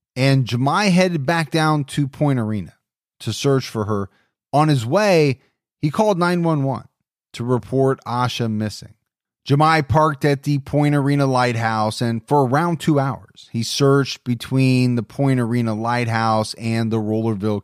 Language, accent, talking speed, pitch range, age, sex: English, American, 150 wpm, 115-155 Hz, 30-49, male